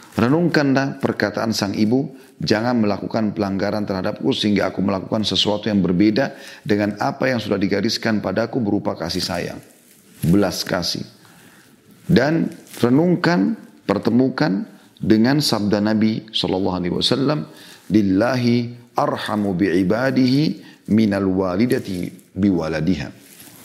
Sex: male